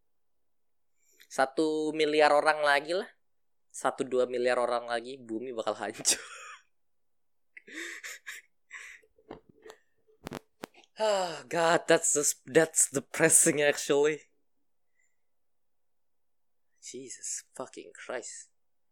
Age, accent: 20-39, native